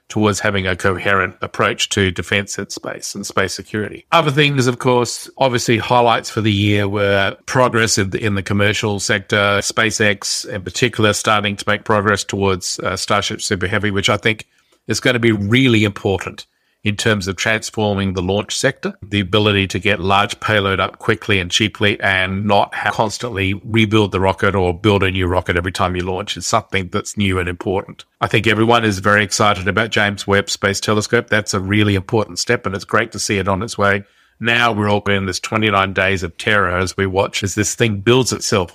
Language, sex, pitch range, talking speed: English, male, 100-115 Hz, 200 wpm